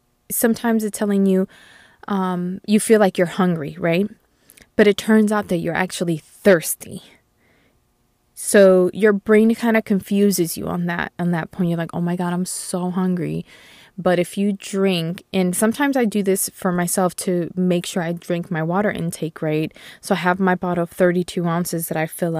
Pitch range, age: 175-205 Hz, 20-39